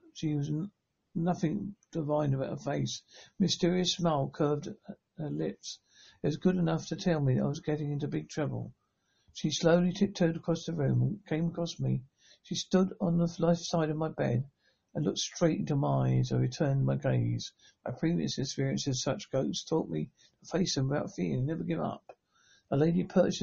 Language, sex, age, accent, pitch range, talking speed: English, male, 60-79, British, 145-175 Hz, 195 wpm